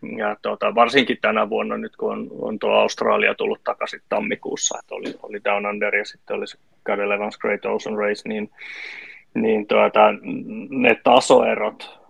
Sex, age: male, 30-49